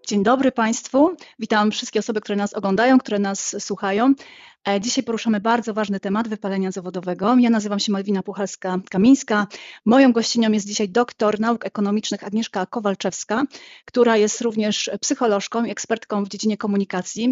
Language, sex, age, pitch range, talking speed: Polish, female, 30-49, 205-235 Hz, 145 wpm